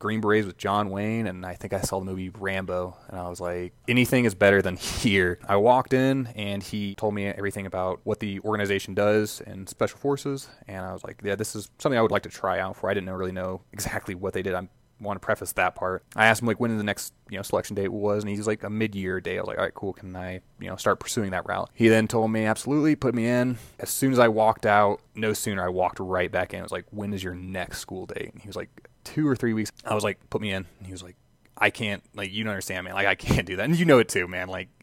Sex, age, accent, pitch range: male, 20-39, American, 95-115 Hz